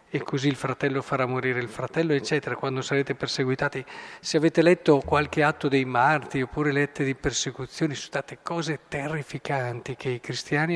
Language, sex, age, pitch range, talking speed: Italian, male, 50-69, 135-165 Hz, 165 wpm